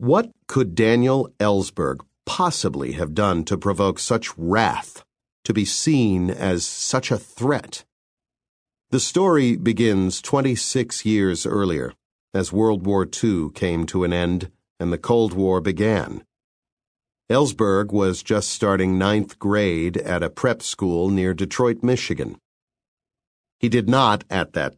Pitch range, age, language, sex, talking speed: 95-125 Hz, 50-69, English, male, 135 wpm